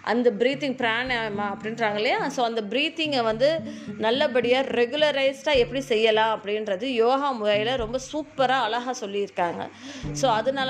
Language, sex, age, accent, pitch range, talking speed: Tamil, female, 20-39, native, 215-270 Hz, 125 wpm